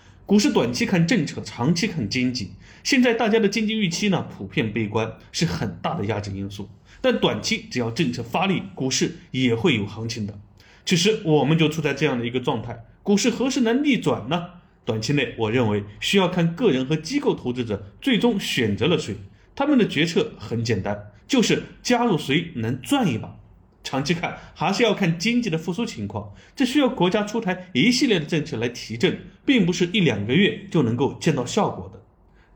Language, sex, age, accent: Chinese, male, 30-49, native